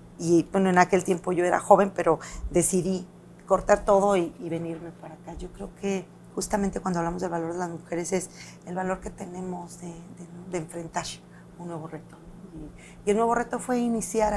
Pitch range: 170-200 Hz